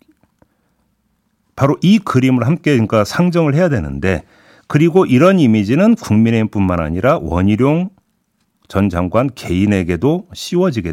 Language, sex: Korean, male